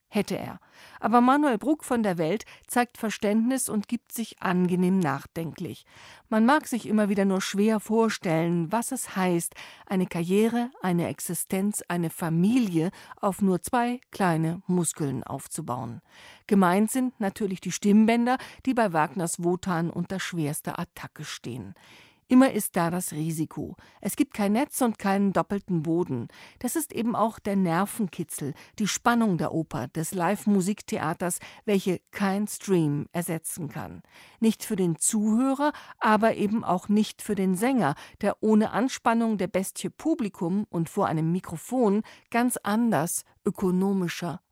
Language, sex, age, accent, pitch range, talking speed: German, female, 50-69, German, 170-225 Hz, 140 wpm